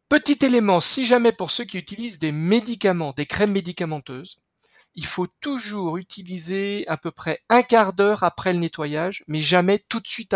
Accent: French